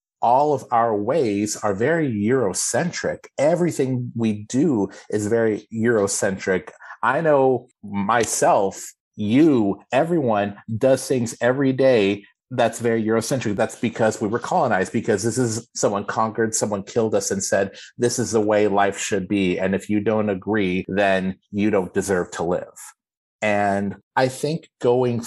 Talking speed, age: 145 wpm, 30-49